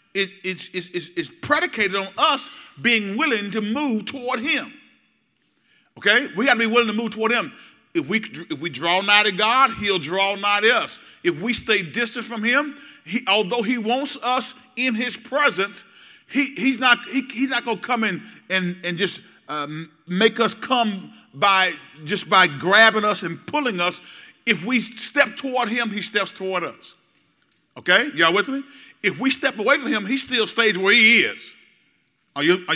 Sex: male